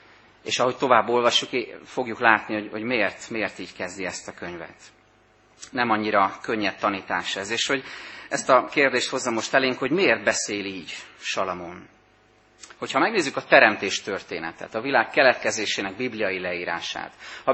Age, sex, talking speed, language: 30-49, male, 150 wpm, Hungarian